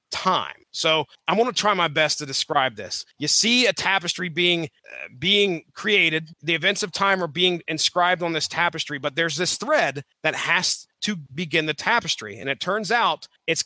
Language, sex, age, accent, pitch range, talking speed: English, male, 30-49, American, 155-215 Hz, 195 wpm